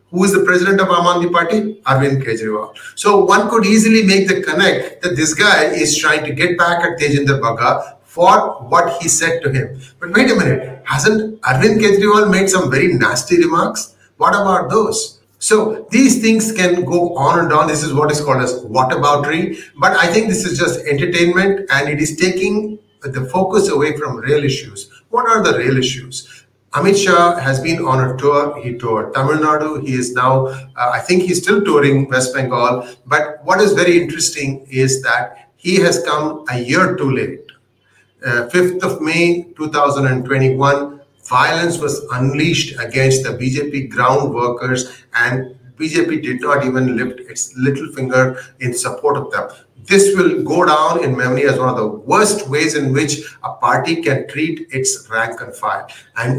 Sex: male